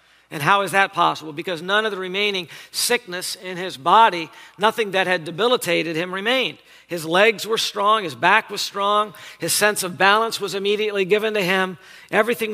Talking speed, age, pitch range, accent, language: 180 wpm, 50-69, 170-220 Hz, American, English